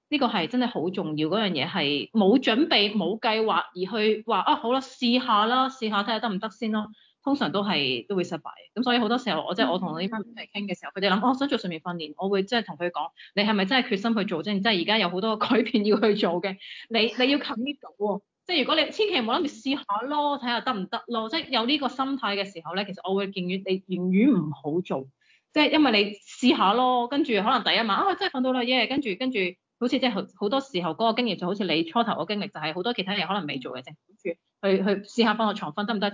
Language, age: Chinese, 30-49